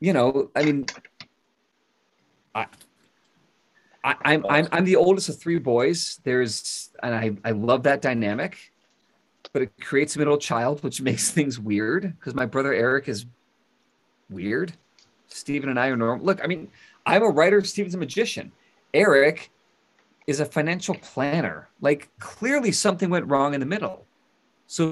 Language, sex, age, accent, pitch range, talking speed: English, male, 40-59, American, 125-175 Hz, 155 wpm